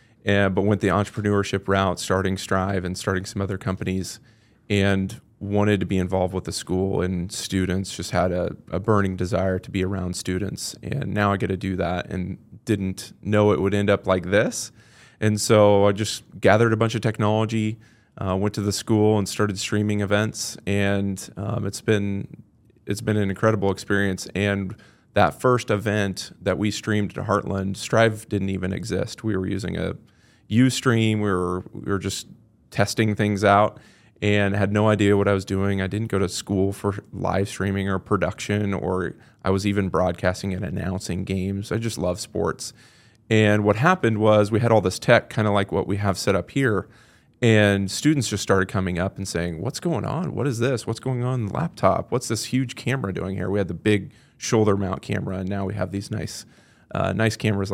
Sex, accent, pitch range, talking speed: male, American, 95-110 Hz, 200 wpm